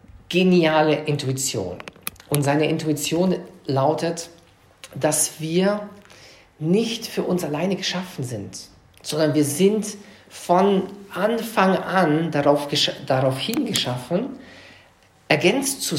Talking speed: 95 wpm